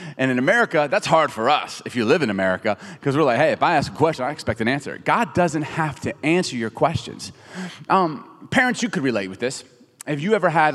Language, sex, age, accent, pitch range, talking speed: English, male, 30-49, American, 125-205 Hz, 240 wpm